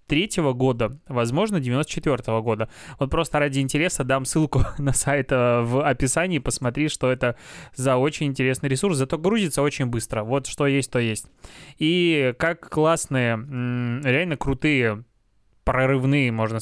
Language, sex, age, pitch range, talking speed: Russian, male, 20-39, 125-145 Hz, 135 wpm